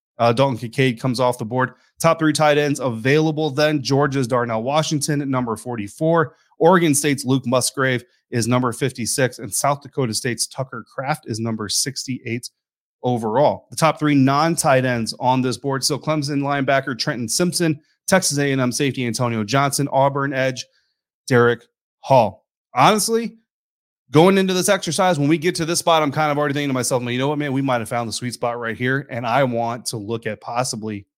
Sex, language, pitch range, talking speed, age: male, English, 120-150 Hz, 190 wpm, 30-49